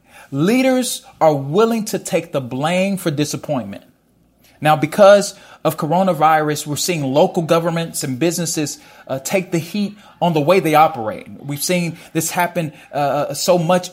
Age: 30-49